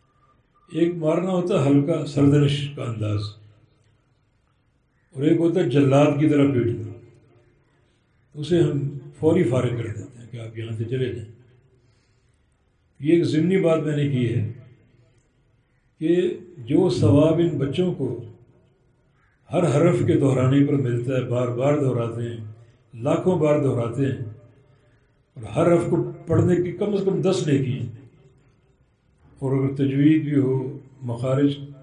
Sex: male